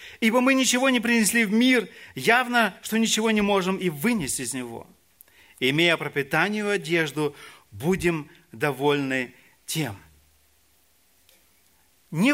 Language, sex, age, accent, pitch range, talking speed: Russian, male, 40-59, native, 145-225 Hz, 120 wpm